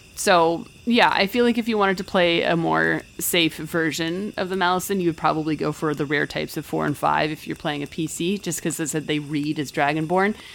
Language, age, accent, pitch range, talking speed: English, 30-49, American, 145-175 Hz, 235 wpm